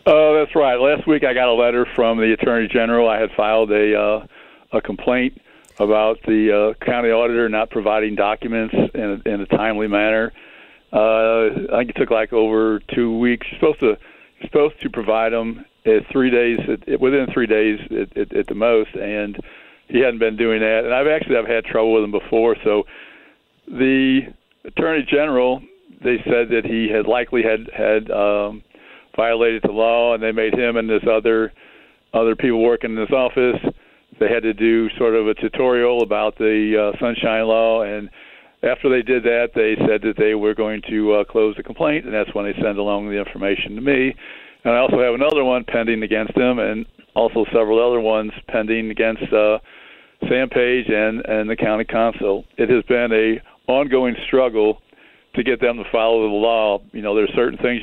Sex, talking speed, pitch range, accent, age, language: male, 195 wpm, 110-120 Hz, American, 60-79, English